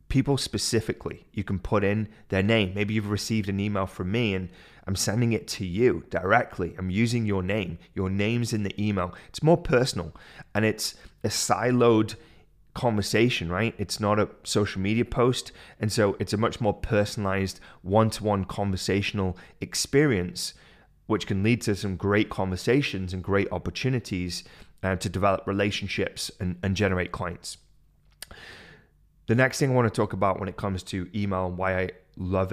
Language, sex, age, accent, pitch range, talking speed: English, male, 30-49, British, 95-110 Hz, 165 wpm